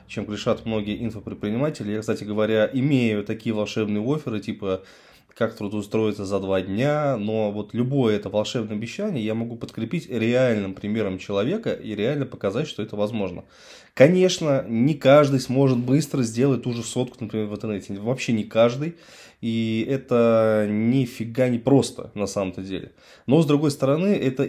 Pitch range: 105-135 Hz